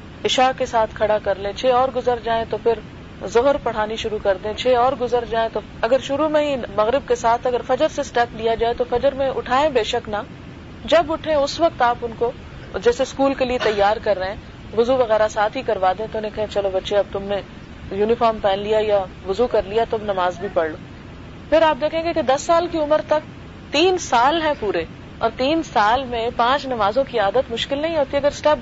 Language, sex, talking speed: Urdu, female, 230 wpm